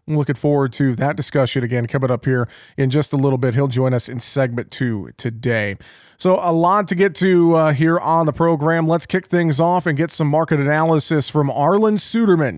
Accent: American